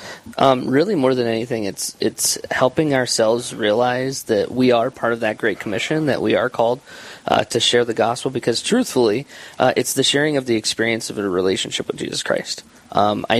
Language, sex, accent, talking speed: English, male, American, 195 wpm